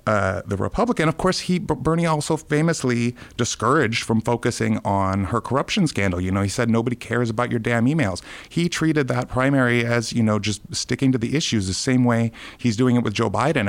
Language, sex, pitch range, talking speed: English, male, 100-130 Hz, 205 wpm